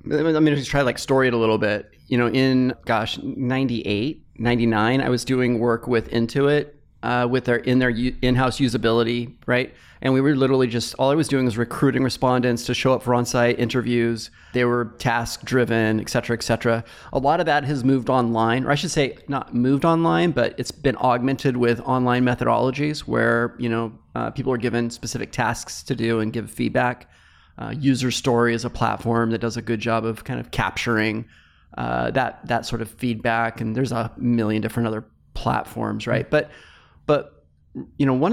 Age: 30-49